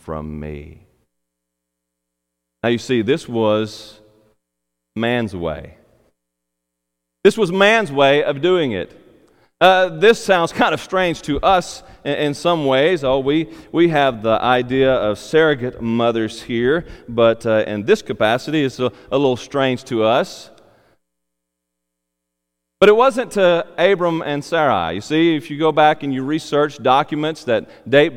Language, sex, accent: English, male, American